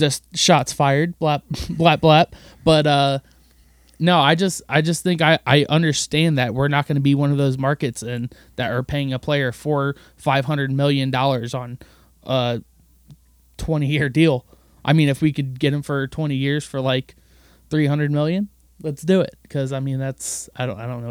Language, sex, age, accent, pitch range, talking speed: English, male, 20-39, American, 130-155 Hz, 195 wpm